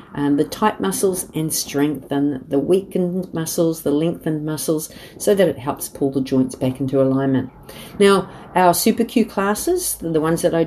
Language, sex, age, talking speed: English, female, 50-69, 175 wpm